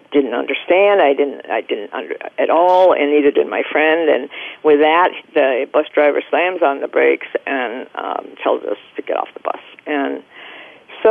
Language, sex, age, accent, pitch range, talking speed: English, female, 50-69, American, 145-215 Hz, 190 wpm